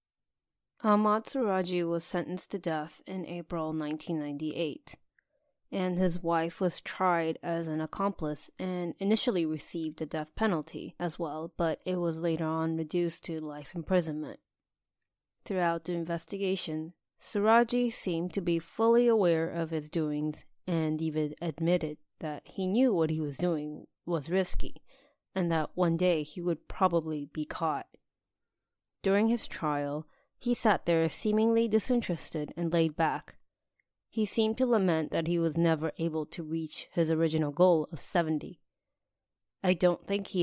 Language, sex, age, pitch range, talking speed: English, female, 20-39, 155-185 Hz, 145 wpm